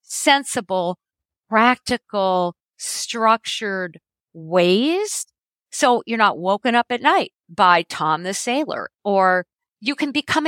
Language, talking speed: English, 110 wpm